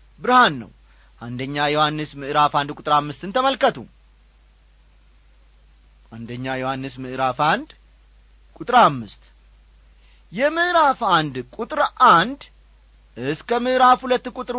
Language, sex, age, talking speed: Amharic, male, 40-59, 90 wpm